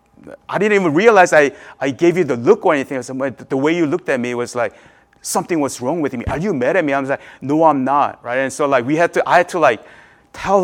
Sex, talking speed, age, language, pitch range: male, 290 wpm, 30-49, English, 135-185 Hz